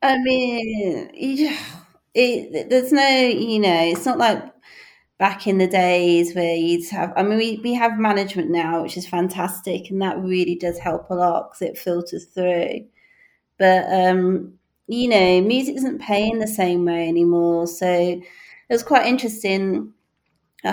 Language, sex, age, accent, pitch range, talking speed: English, female, 30-49, British, 170-200 Hz, 165 wpm